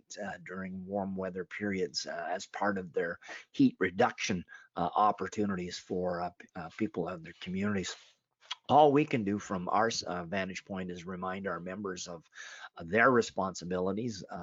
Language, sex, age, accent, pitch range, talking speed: English, male, 40-59, American, 95-115 Hz, 160 wpm